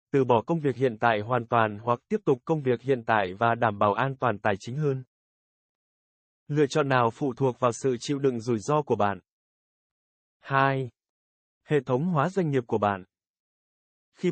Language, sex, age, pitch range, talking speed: Vietnamese, male, 20-39, 110-145 Hz, 190 wpm